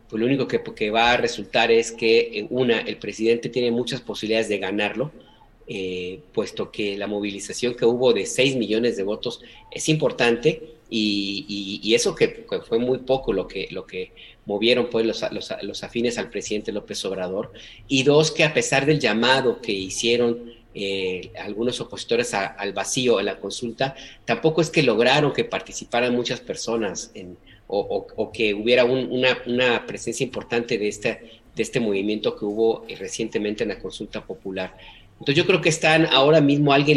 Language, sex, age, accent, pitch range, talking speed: Spanish, male, 40-59, Mexican, 105-135 Hz, 180 wpm